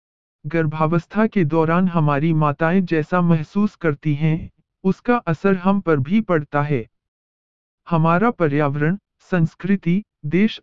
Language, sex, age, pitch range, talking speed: Hindi, male, 50-69, 150-185 Hz, 115 wpm